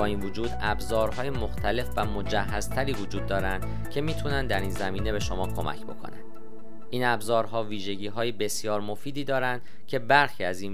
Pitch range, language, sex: 100-120 Hz, Persian, male